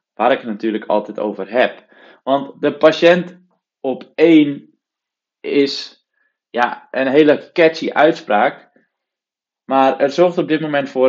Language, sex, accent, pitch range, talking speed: Dutch, male, Dutch, 120-155 Hz, 135 wpm